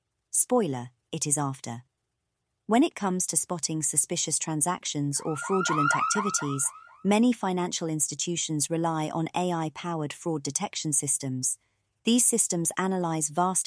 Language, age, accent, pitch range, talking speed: English, 30-49, British, 145-185 Hz, 120 wpm